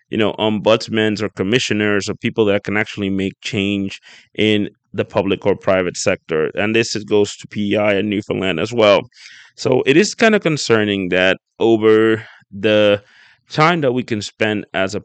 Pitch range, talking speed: 95-110 Hz, 170 wpm